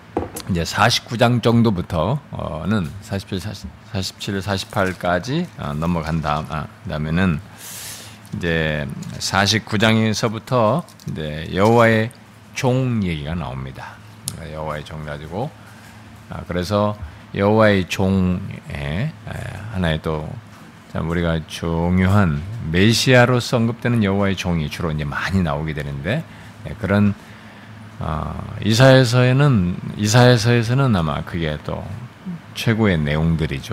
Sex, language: male, Korean